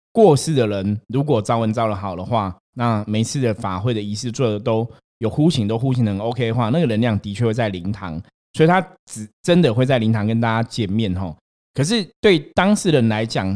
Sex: male